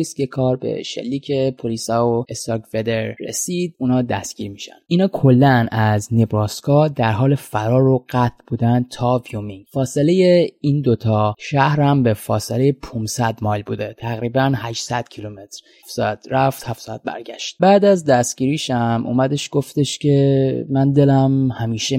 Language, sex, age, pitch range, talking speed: Persian, male, 20-39, 110-145 Hz, 140 wpm